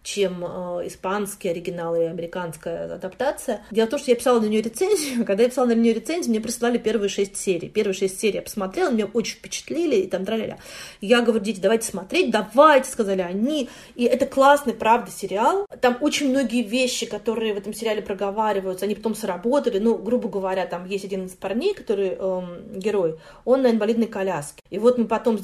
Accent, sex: native, female